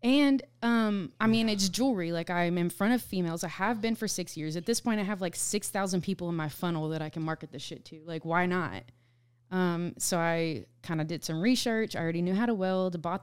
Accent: American